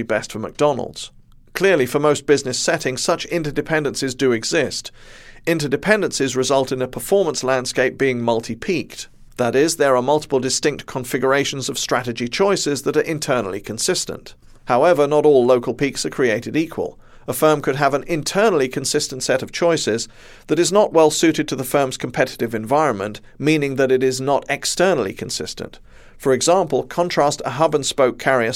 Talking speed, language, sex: 160 wpm, English, male